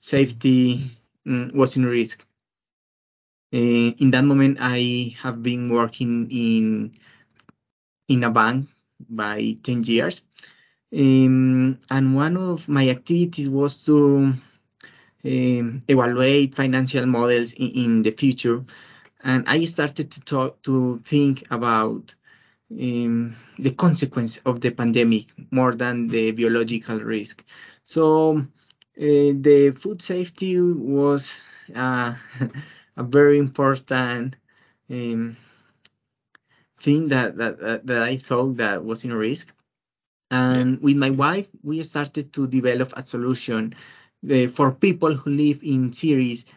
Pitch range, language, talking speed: 120-140 Hz, English, 120 wpm